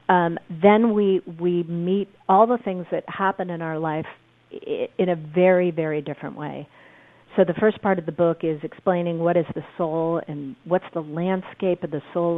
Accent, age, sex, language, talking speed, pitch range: American, 40-59, female, English, 195 wpm, 155-195 Hz